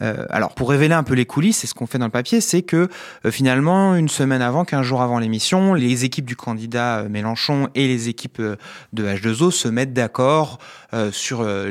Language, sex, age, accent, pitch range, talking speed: French, male, 30-49, French, 115-155 Hz, 215 wpm